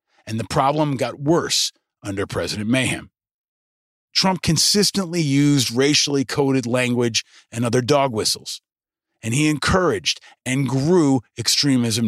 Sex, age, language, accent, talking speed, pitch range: male, 40-59, English, American, 120 wpm, 115-145 Hz